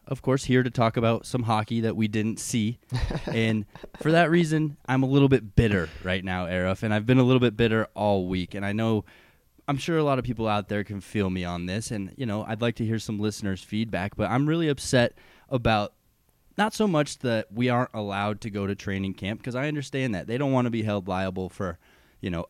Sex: male